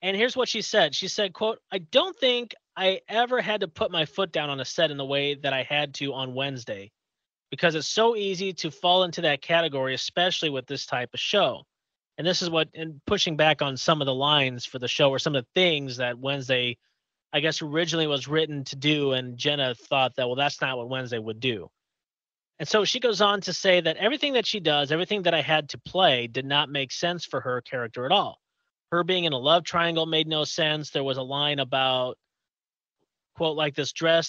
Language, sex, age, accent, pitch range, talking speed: English, male, 30-49, American, 135-180 Hz, 230 wpm